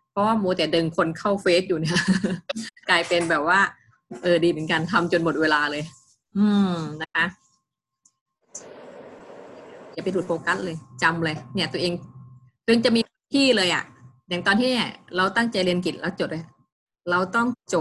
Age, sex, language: 20-39, female, Thai